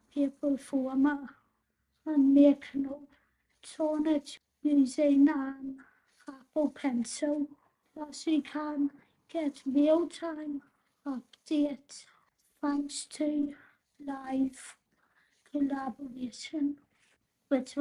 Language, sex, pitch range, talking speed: English, female, 270-290 Hz, 70 wpm